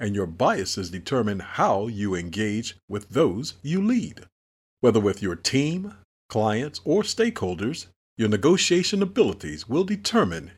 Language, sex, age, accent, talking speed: English, male, 50-69, American, 130 wpm